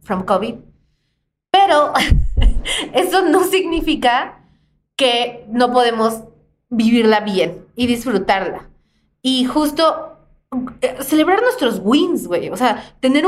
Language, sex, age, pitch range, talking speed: Spanish, female, 20-39, 220-275 Hz, 105 wpm